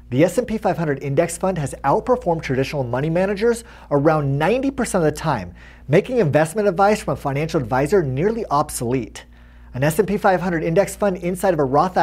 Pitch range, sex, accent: 135-190 Hz, male, American